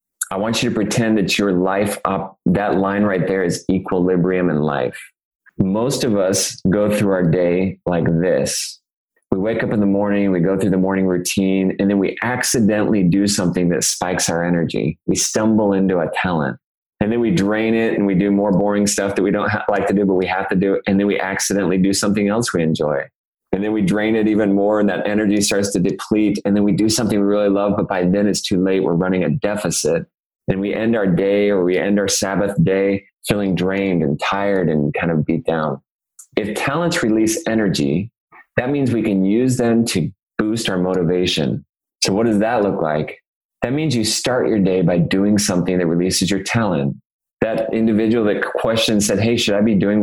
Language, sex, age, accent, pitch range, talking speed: English, male, 20-39, American, 95-105 Hz, 215 wpm